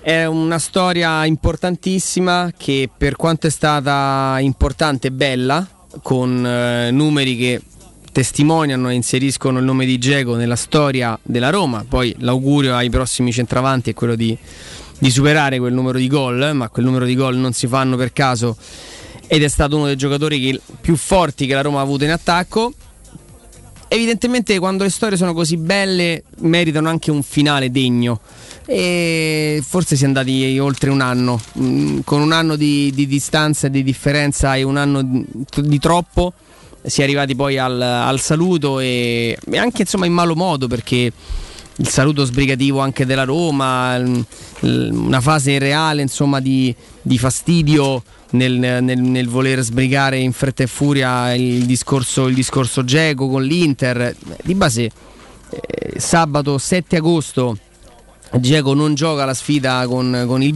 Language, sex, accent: Italian, male, native